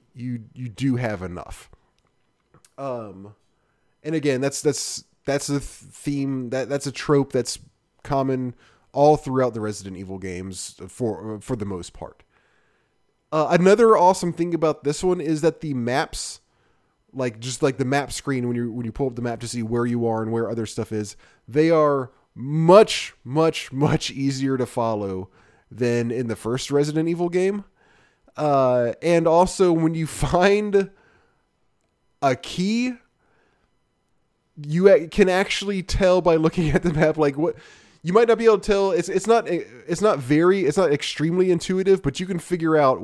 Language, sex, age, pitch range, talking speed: English, male, 20-39, 120-165 Hz, 170 wpm